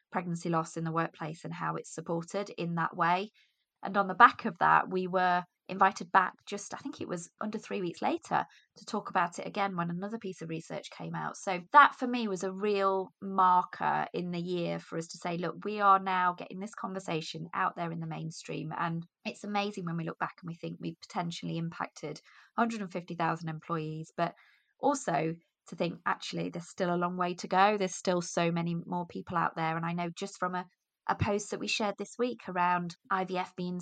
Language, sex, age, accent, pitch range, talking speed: English, female, 20-39, British, 170-210 Hz, 215 wpm